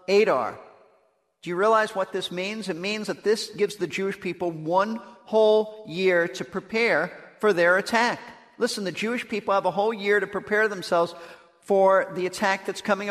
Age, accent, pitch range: 50-69, American, 170-220 Hz